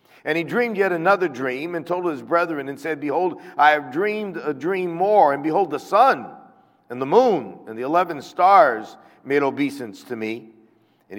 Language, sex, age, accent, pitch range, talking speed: English, male, 50-69, American, 110-150 Hz, 190 wpm